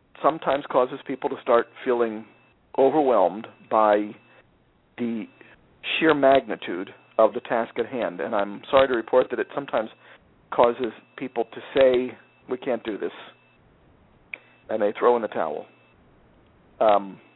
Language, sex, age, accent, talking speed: English, male, 50-69, American, 135 wpm